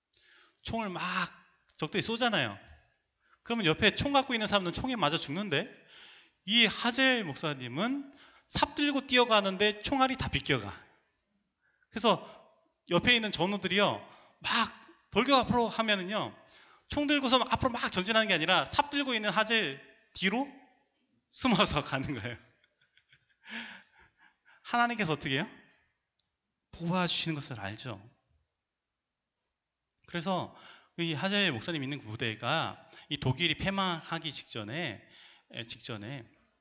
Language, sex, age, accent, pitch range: Korean, male, 30-49, native, 140-220 Hz